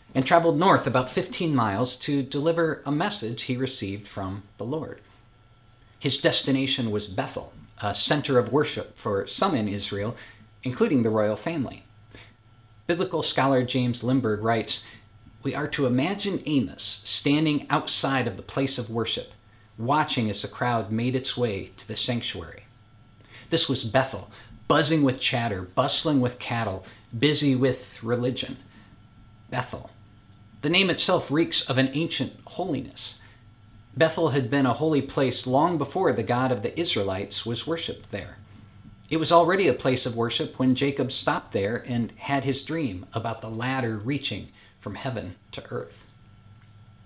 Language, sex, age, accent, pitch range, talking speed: English, male, 40-59, American, 105-140 Hz, 150 wpm